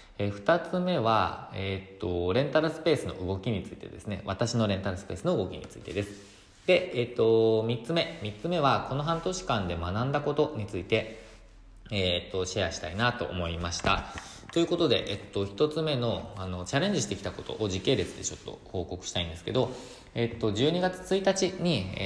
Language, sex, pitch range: Japanese, male, 95-120 Hz